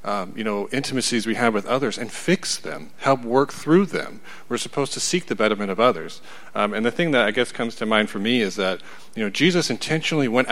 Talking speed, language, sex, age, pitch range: 240 wpm, English, male, 40-59, 110-145 Hz